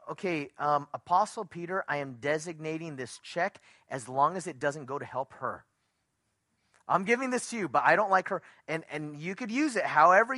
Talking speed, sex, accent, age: 200 wpm, male, American, 30-49